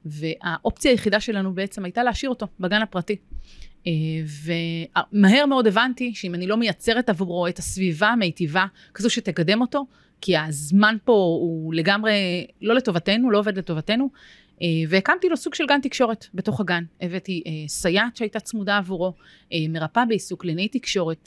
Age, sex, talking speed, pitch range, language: 30-49, female, 140 wpm, 170-230 Hz, Hebrew